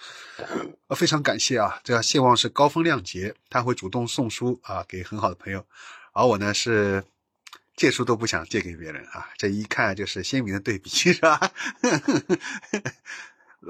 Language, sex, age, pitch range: Chinese, male, 30-49, 95-125 Hz